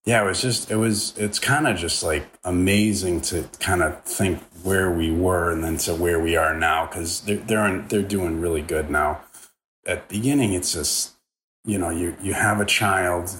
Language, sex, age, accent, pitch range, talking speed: English, male, 30-49, American, 80-95 Hz, 215 wpm